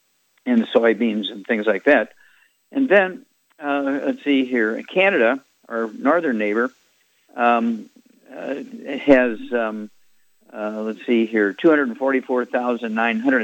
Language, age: English, 50-69